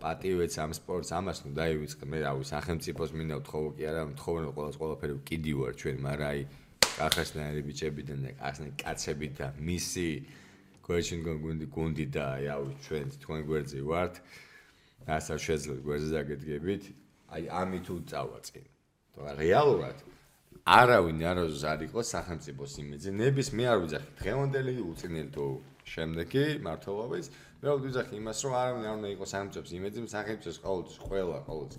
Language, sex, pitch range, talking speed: English, male, 75-95 Hz, 35 wpm